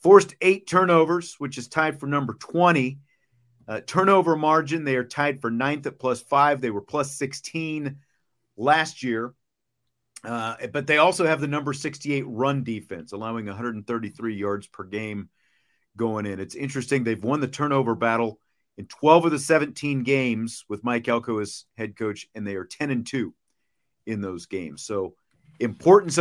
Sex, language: male, English